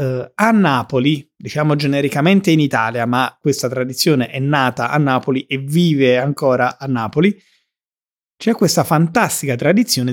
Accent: native